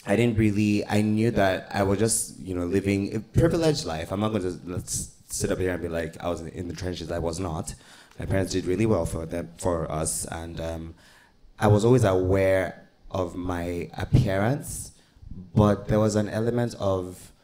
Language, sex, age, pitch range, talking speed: English, male, 20-39, 85-100 Hz, 195 wpm